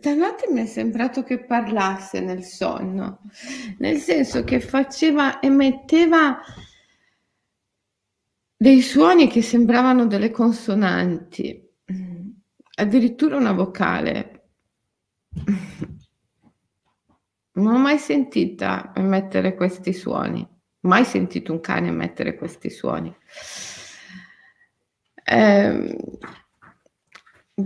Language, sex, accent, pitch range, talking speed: Italian, female, native, 180-245 Hz, 80 wpm